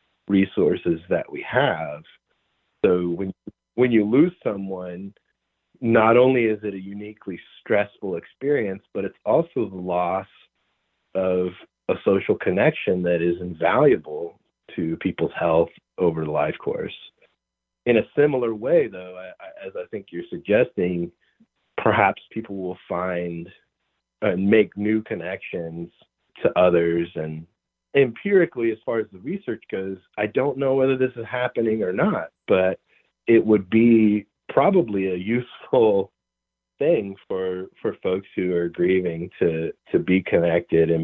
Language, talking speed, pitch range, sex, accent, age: English, 140 wpm, 85-115 Hz, male, American, 40-59